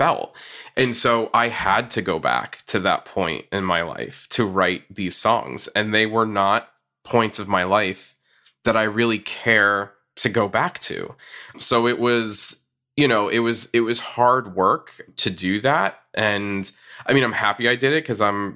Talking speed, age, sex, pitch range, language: 190 wpm, 20-39, male, 100-120 Hz, English